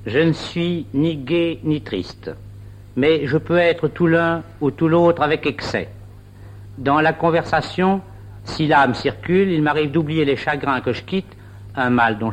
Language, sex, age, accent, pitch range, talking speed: French, male, 60-79, French, 100-170 Hz, 170 wpm